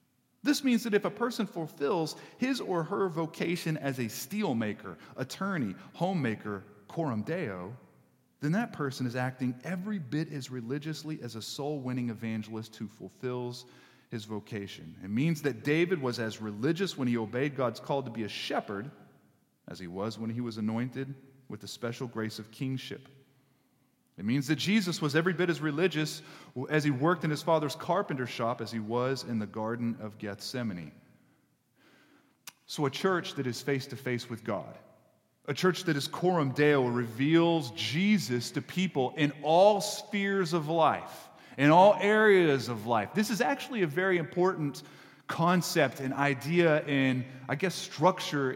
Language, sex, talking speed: English, male, 160 wpm